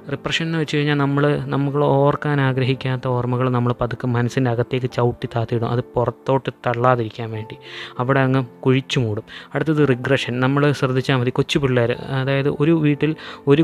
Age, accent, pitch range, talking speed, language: 20-39, native, 125-150 Hz, 150 wpm, Malayalam